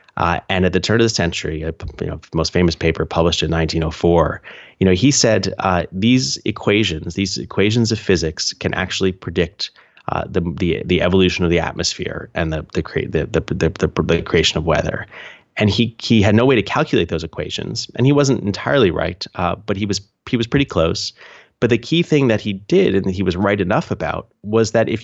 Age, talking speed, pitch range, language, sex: 30-49, 215 wpm, 85-110 Hz, English, male